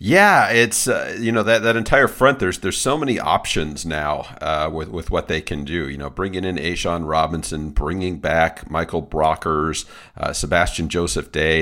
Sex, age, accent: male, 40-59, American